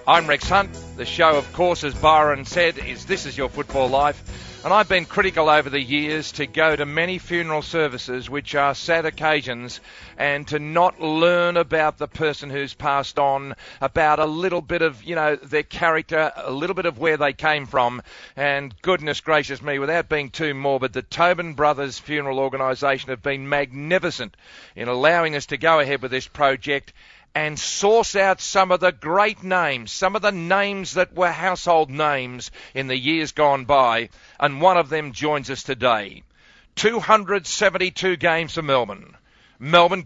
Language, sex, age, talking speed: English, male, 40-59, 175 wpm